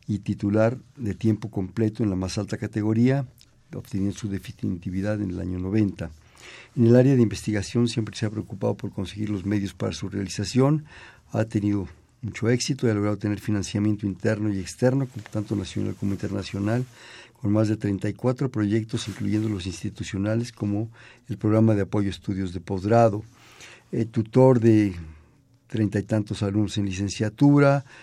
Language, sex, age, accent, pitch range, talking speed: Spanish, male, 50-69, Mexican, 100-120 Hz, 160 wpm